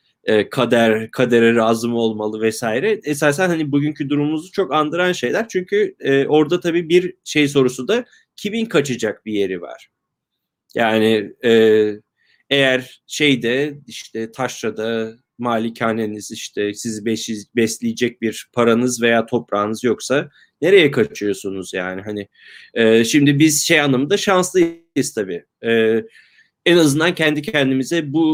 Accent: native